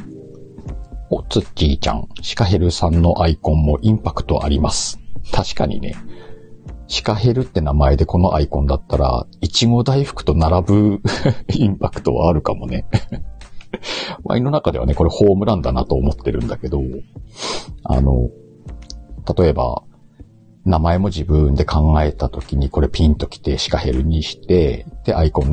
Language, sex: Japanese, male